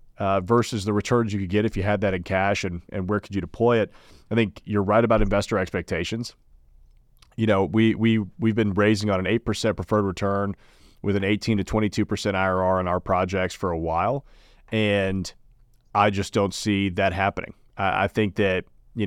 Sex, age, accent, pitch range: male, 30-49, American, 95-115 Hz